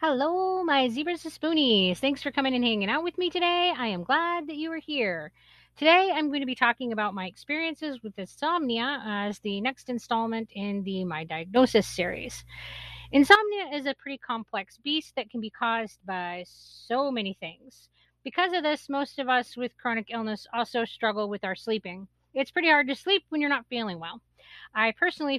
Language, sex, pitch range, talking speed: English, female, 200-275 Hz, 190 wpm